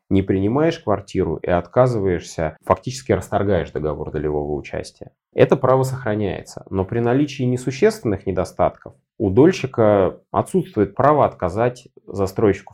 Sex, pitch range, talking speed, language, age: male, 95-135 Hz, 115 wpm, Russian, 20-39